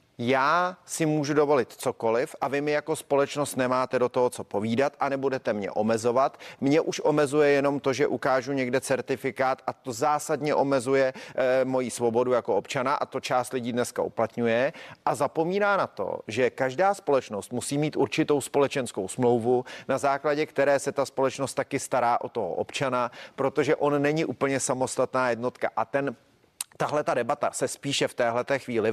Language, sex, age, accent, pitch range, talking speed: Czech, male, 30-49, native, 130-150 Hz, 170 wpm